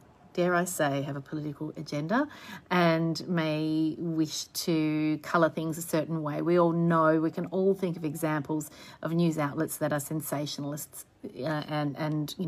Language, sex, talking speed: English, female, 170 wpm